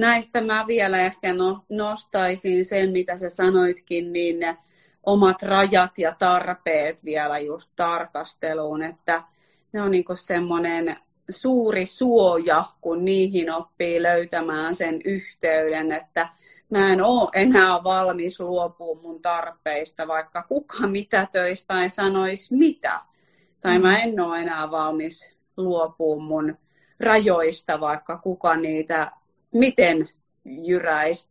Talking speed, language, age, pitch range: 115 wpm, Finnish, 30-49, 165-195 Hz